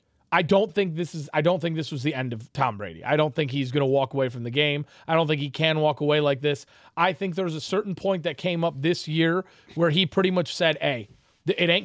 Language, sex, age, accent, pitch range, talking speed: English, male, 30-49, American, 150-190 Hz, 275 wpm